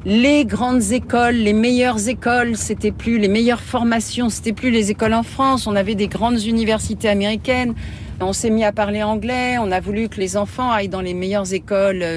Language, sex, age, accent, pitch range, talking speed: French, female, 50-69, French, 185-240 Hz, 195 wpm